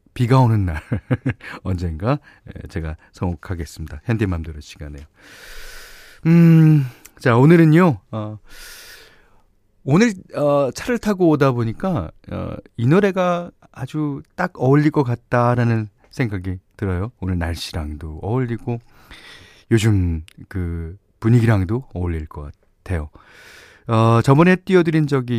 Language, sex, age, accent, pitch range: Korean, male, 40-59, native, 95-145 Hz